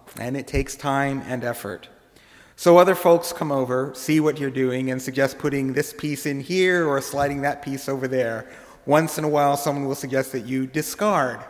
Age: 40-59